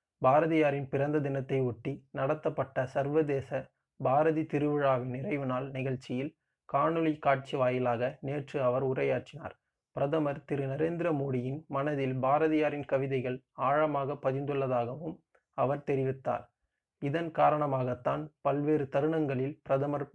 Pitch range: 135-155 Hz